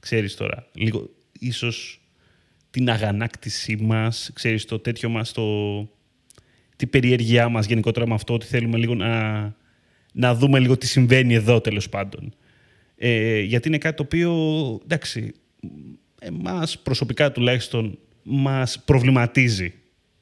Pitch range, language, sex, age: 110-140 Hz, Greek, male, 30-49